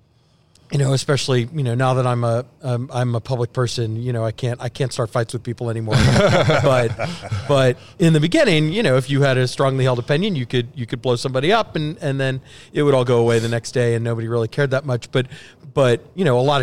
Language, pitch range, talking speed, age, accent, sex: English, 120-140 Hz, 250 wpm, 40-59, American, male